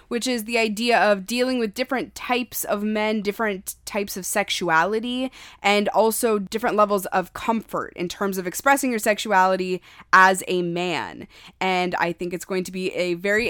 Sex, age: female, 20-39